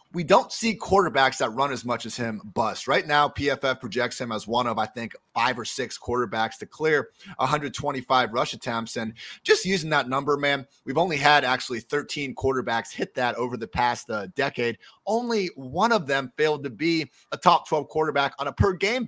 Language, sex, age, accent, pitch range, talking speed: English, male, 30-49, American, 120-155 Hz, 200 wpm